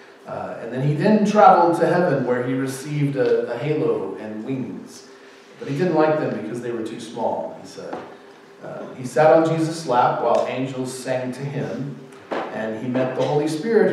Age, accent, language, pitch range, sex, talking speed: 40-59, American, English, 125-155 Hz, male, 195 wpm